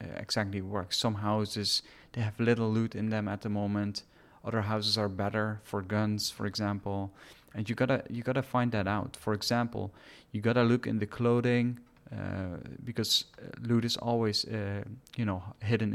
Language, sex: English, male